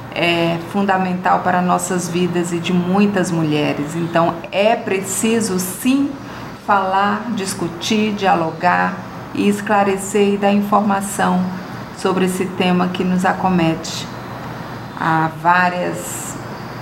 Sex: female